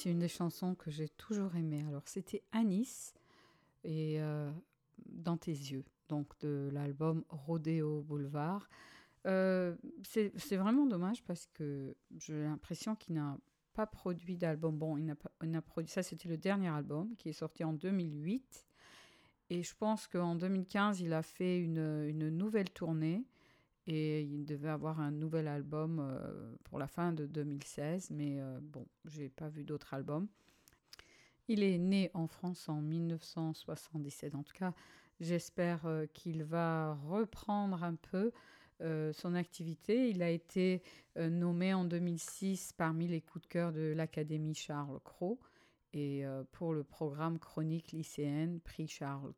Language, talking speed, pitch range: English, 150 wpm, 150-180 Hz